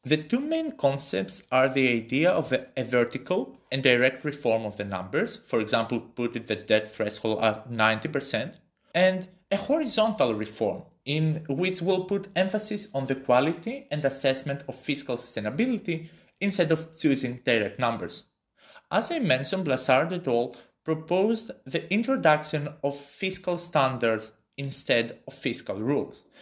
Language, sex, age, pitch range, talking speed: English, male, 30-49, 125-175 Hz, 140 wpm